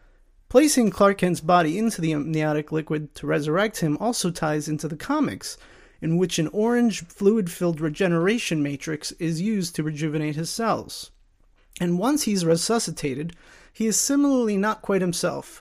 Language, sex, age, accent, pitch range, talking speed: English, male, 30-49, American, 155-195 Hz, 150 wpm